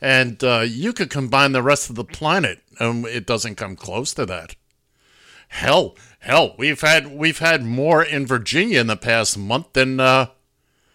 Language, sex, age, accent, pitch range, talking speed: English, male, 50-69, American, 110-140 Hz, 175 wpm